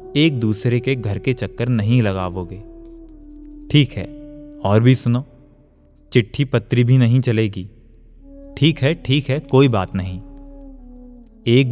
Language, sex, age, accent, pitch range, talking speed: Hindi, male, 20-39, native, 105-145 Hz, 135 wpm